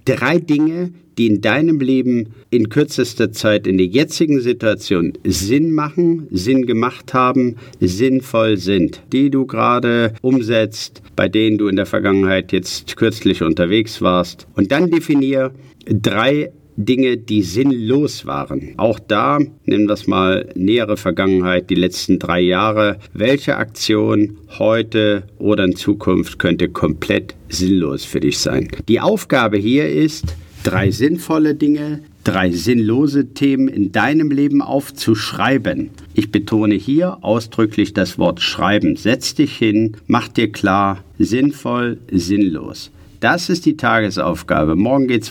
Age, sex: 50-69, male